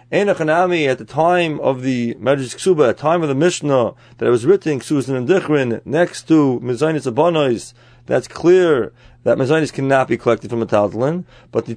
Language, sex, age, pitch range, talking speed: English, male, 30-49, 130-175 Hz, 180 wpm